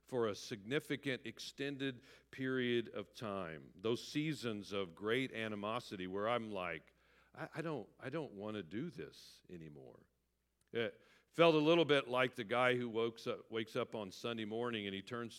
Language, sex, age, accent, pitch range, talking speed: English, male, 50-69, American, 100-135 Hz, 170 wpm